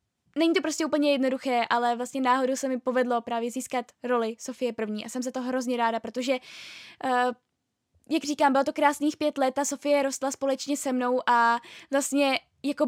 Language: Czech